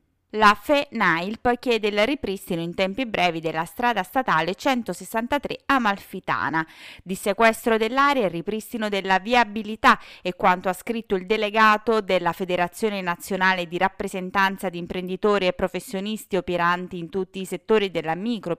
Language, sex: Italian, female